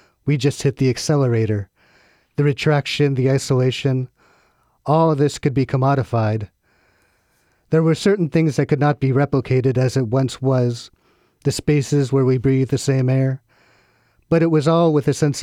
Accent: American